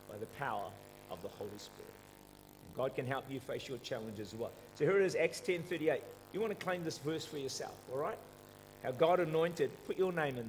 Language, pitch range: English, 145-215 Hz